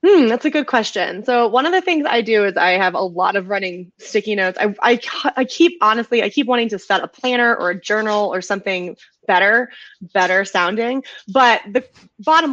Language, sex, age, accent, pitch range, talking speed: English, female, 20-39, American, 195-255 Hz, 210 wpm